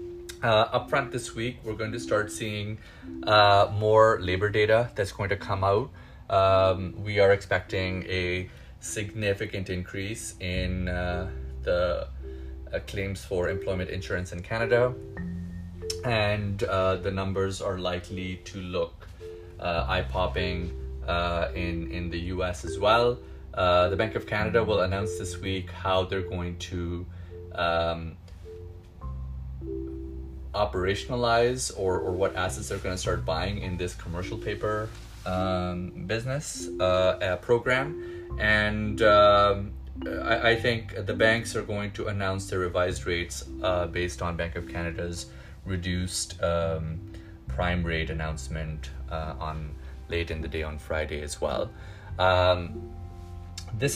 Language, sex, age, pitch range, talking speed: English, male, 20-39, 85-105 Hz, 135 wpm